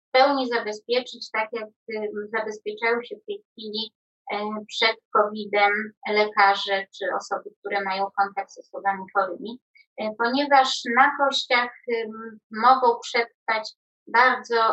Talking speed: 120 wpm